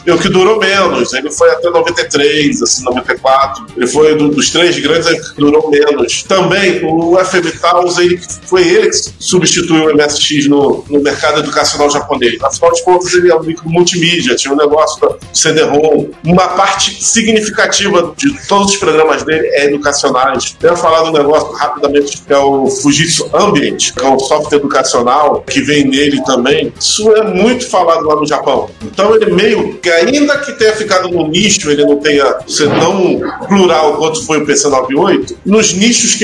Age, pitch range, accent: 40-59, 145-205 Hz, Brazilian